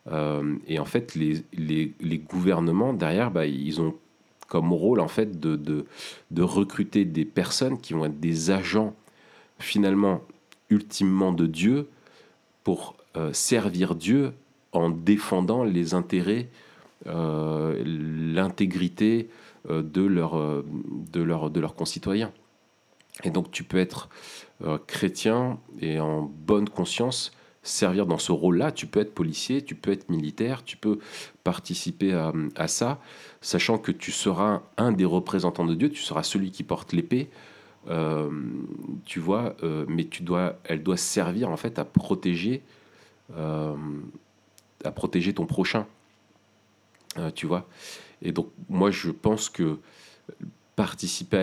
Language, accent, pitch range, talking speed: French, French, 80-105 Hz, 140 wpm